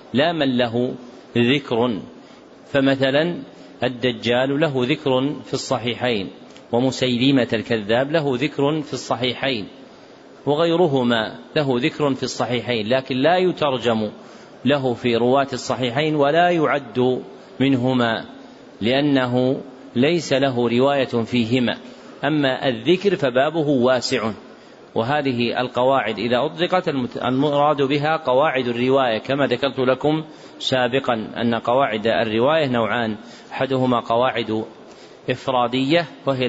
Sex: male